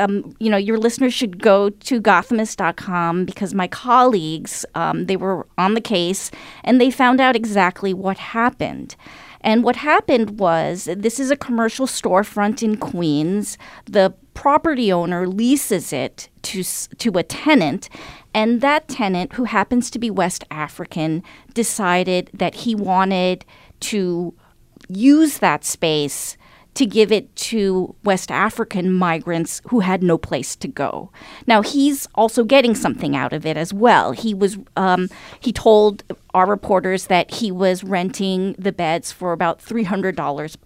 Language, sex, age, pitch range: English, female, 40-59, 180-230 Hz